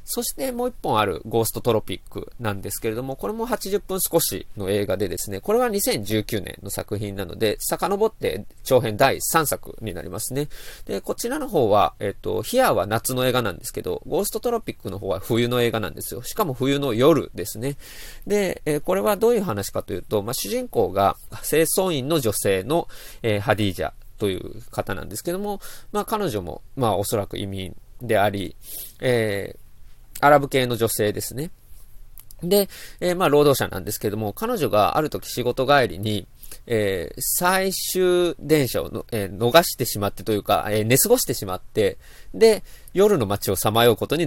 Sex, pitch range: male, 105-175 Hz